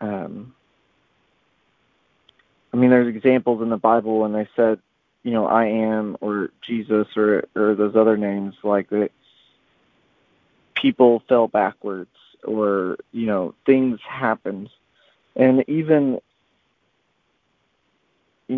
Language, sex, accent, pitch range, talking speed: English, male, American, 105-130 Hz, 115 wpm